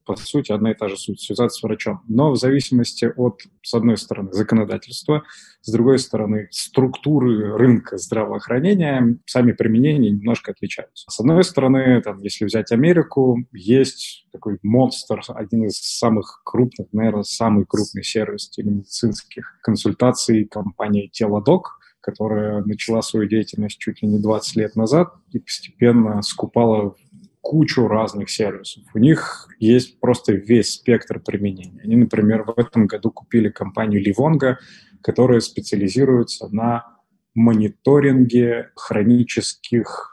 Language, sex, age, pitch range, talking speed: Russian, male, 20-39, 105-125 Hz, 130 wpm